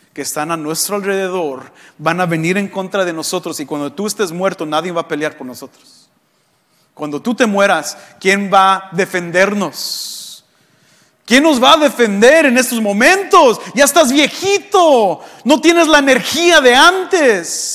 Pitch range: 160-245 Hz